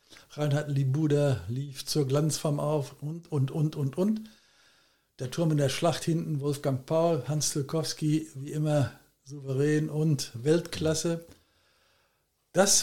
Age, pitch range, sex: 60-79, 135-165 Hz, male